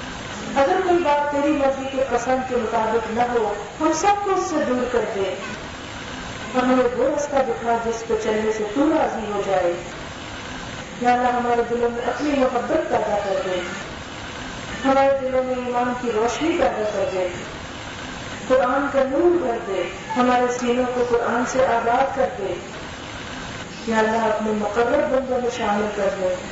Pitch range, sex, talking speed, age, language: 215-265 Hz, female, 165 wpm, 40-59, Urdu